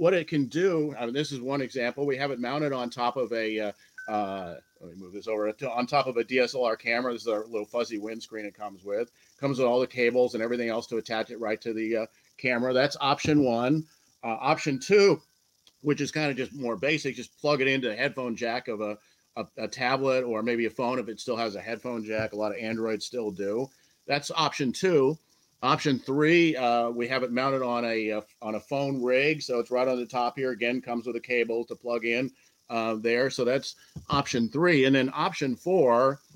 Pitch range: 115-140 Hz